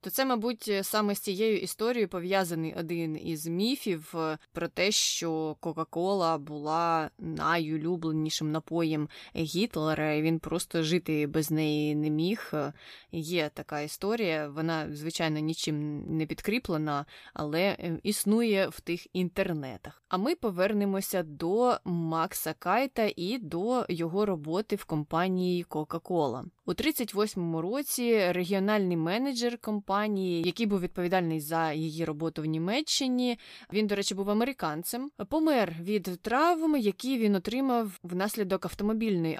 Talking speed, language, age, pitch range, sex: 120 wpm, Ukrainian, 20-39, 165-215 Hz, female